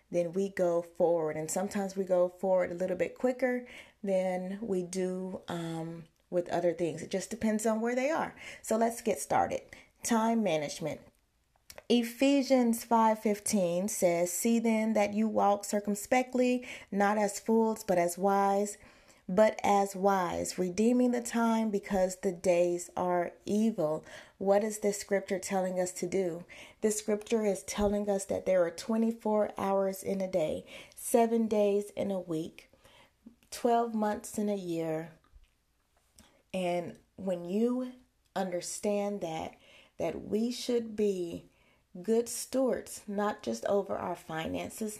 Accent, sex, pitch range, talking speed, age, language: American, female, 180-220 Hz, 145 wpm, 30-49, English